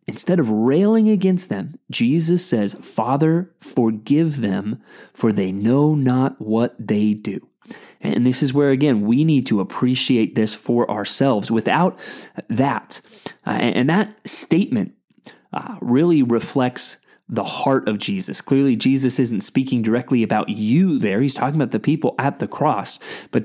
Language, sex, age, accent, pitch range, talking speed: English, male, 30-49, American, 115-155 Hz, 150 wpm